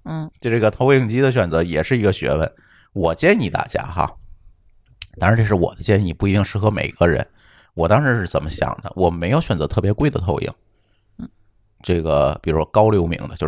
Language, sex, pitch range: Chinese, male, 95-140 Hz